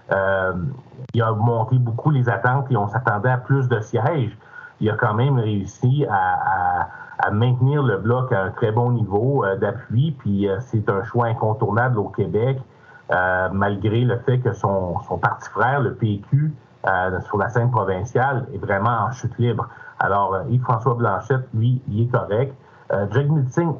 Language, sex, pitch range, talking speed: French, male, 105-130 Hz, 180 wpm